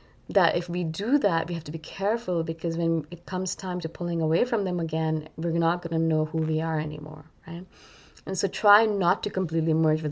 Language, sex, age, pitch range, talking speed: English, female, 20-39, 155-180 Hz, 230 wpm